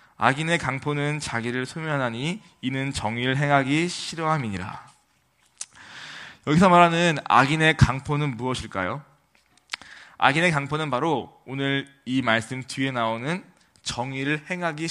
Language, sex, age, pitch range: Korean, male, 20-39, 120-165 Hz